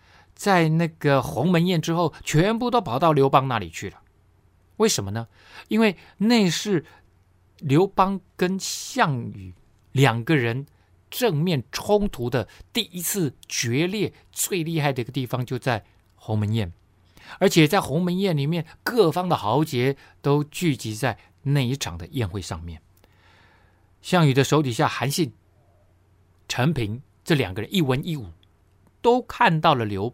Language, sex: Chinese, male